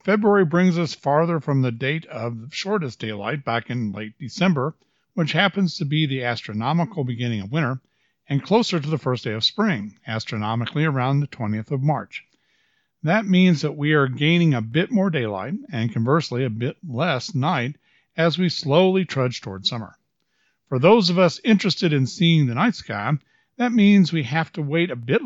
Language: English